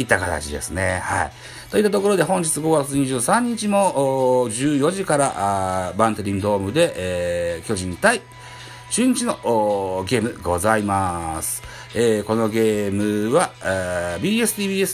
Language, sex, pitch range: Japanese, male, 100-150 Hz